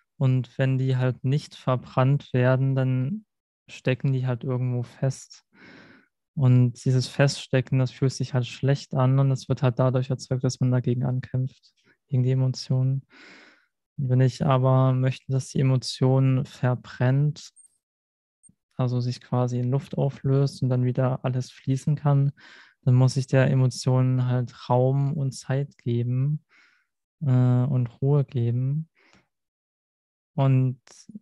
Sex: male